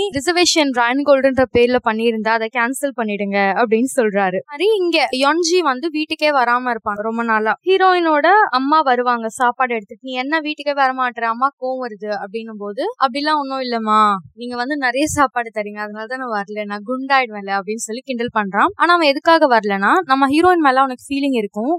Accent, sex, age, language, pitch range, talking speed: native, female, 20-39, Tamil, 230-310 Hz, 55 wpm